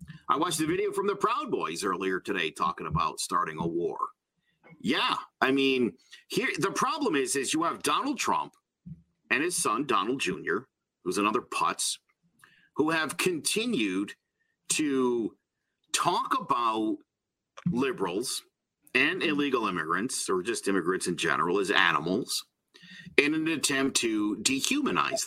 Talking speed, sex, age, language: 135 wpm, male, 50-69, English